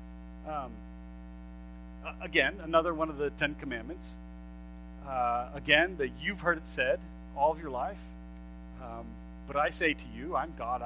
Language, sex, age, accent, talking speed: English, male, 40-59, American, 150 wpm